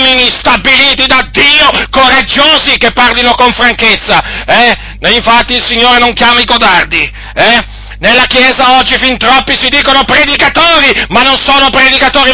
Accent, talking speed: native, 145 wpm